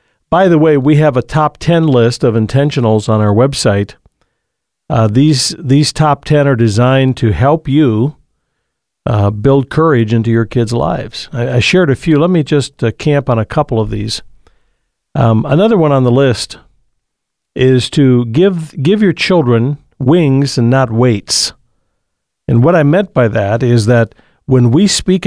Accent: American